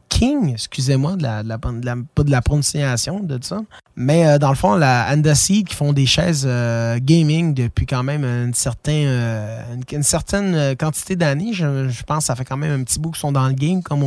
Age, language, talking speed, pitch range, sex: 20-39, French, 235 wpm, 130-165 Hz, male